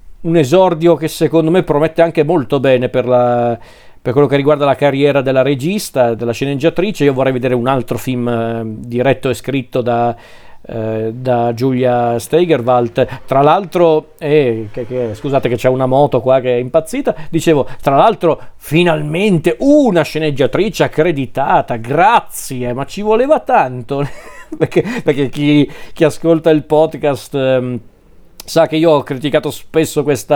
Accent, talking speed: native, 150 wpm